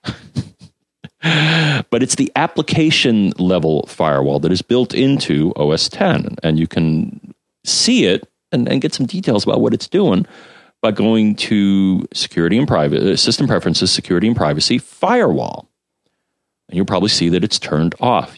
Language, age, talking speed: English, 40-59, 150 wpm